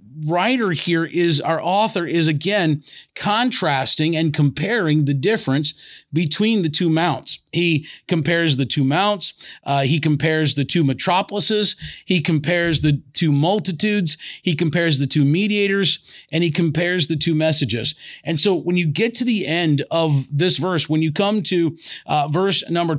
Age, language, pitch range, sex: 40-59, English, 150-180 Hz, male